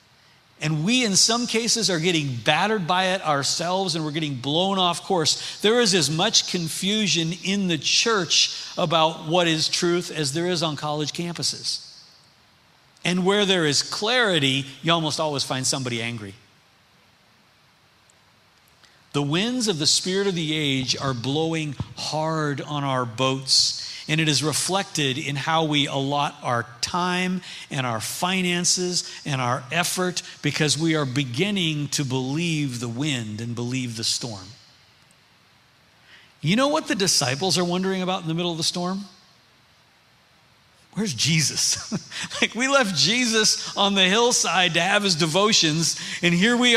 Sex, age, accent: male, 50-69, American